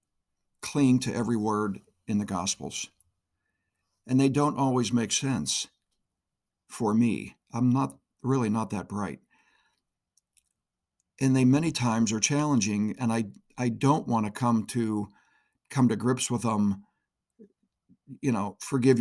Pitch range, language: 110-130 Hz, English